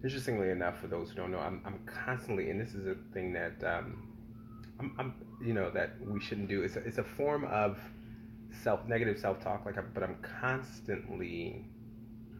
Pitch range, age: 95-115 Hz, 20-39